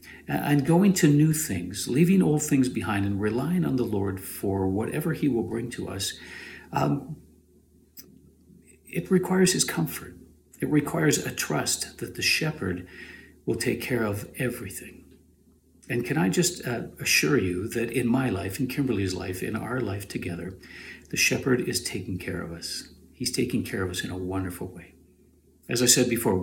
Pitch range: 90-130 Hz